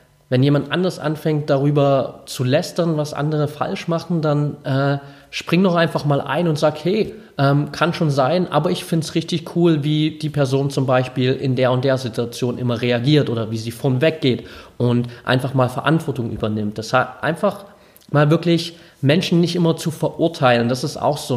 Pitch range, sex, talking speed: 125-160 Hz, male, 190 wpm